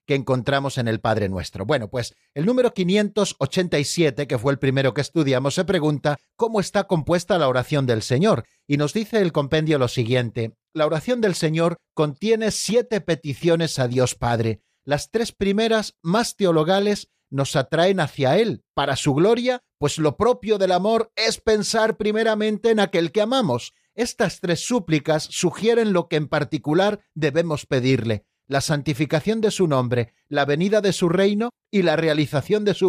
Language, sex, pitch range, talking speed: Spanish, male, 140-200 Hz, 170 wpm